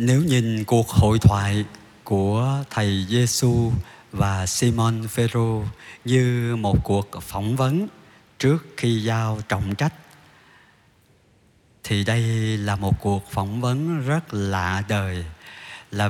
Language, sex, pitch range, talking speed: Vietnamese, male, 100-130 Hz, 120 wpm